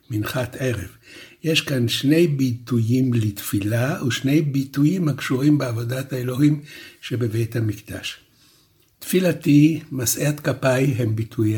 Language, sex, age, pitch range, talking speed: Hebrew, male, 60-79, 115-140 Hz, 100 wpm